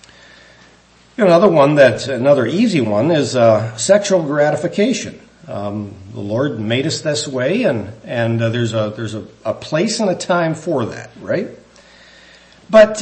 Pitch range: 105-145 Hz